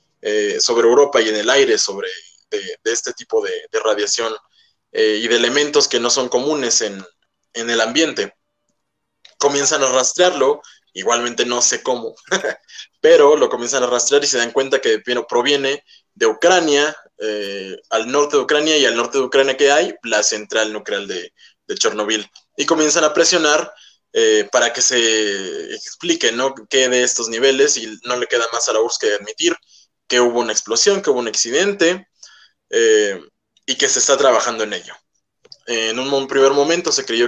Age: 20-39